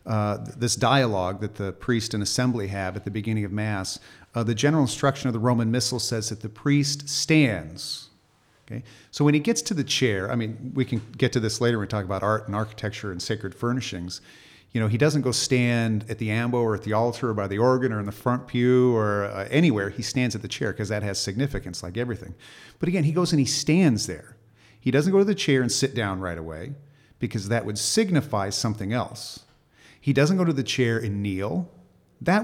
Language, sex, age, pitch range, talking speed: English, male, 40-59, 105-140 Hz, 230 wpm